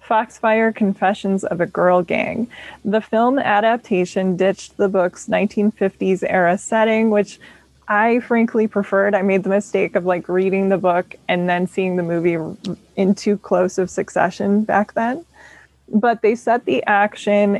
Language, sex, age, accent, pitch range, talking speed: English, female, 20-39, American, 185-220 Hz, 155 wpm